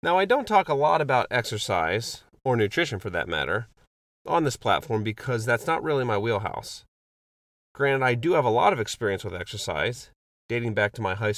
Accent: American